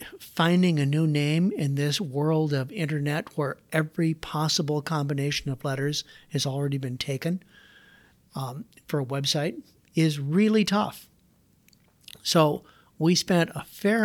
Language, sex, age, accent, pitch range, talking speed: English, male, 50-69, American, 140-165 Hz, 130 wpm